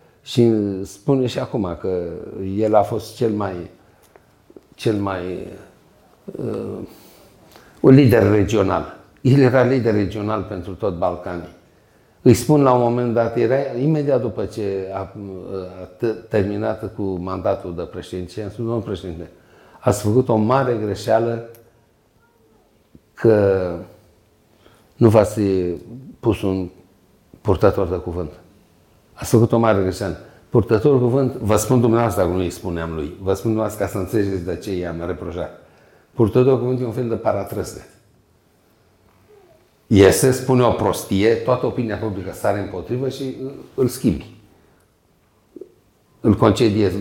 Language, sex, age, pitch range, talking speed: Romanian, male, 60-79, 95-120 Hz, 135 wpm